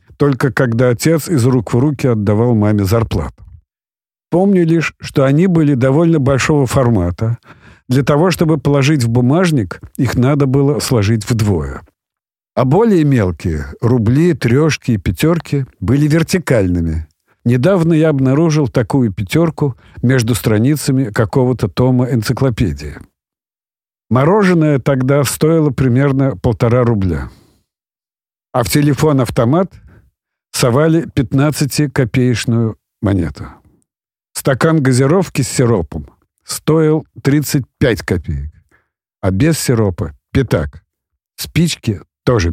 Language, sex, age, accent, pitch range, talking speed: Russian, male, 50-69, native, 110-145 Hz, 105 wpm